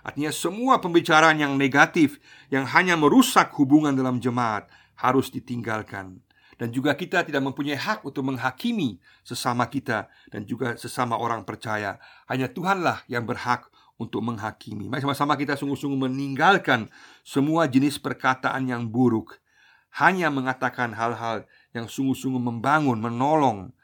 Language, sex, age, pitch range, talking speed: Indonesian, male, 50-69, 115-140 Hz, 130 wpm